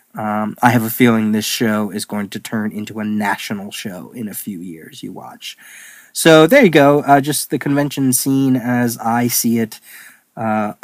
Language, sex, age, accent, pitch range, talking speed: English, male, 30-49, American, 110-135 Hz, 195 wpm